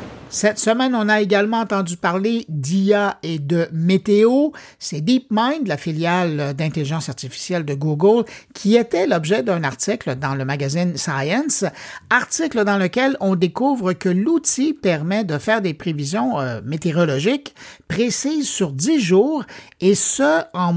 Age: 60-79